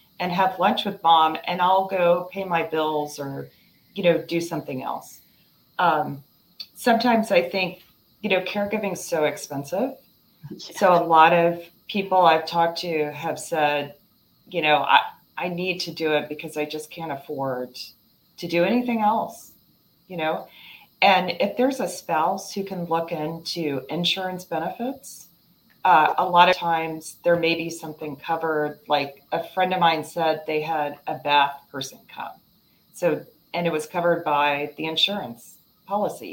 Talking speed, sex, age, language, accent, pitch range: 160 wpm, female, 40-59, English, American, 150-180 Hz